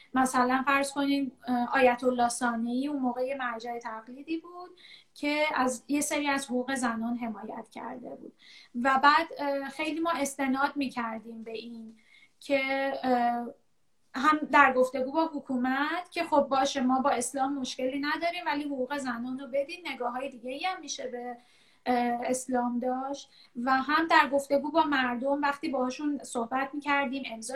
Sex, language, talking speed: female, English, 150 wpm